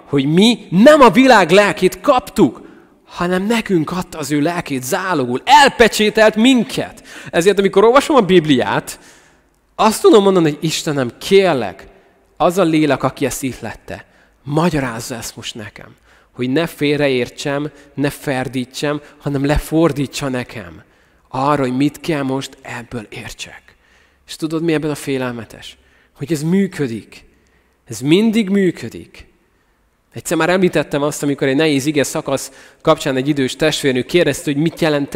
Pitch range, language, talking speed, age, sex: 135-185 Hz, Hungarian, 140 wpm, 30-49, male